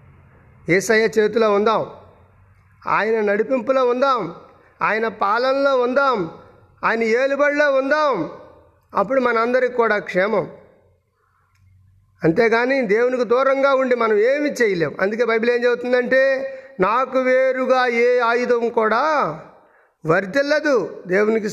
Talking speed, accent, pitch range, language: 100 wpm, native, 190-260 Hz, Telugu